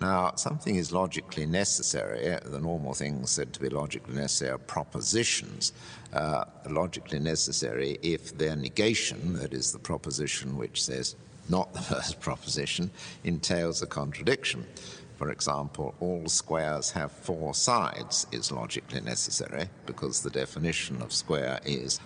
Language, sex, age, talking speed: English, male, 60-79, 135 wpm